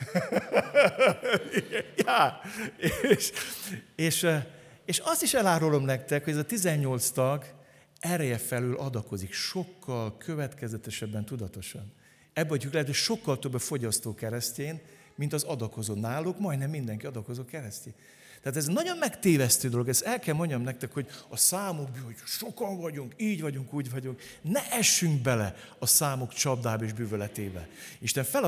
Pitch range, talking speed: 110-165 Hz, 135 wpm